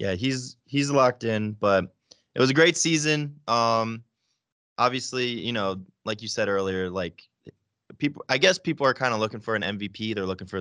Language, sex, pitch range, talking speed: English, male, 95-120 Hz, 190 wpm